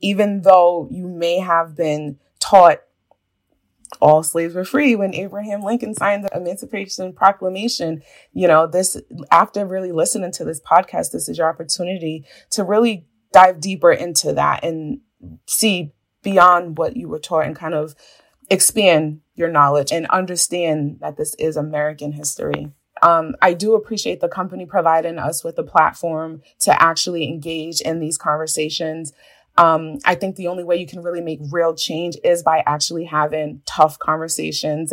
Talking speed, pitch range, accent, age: 160 wpm, 155-175 Hz, American, 20-39